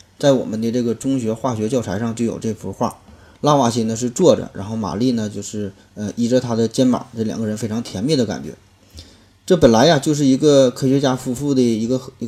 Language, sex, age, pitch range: Chinese, male, 20-39, 100-125 Hz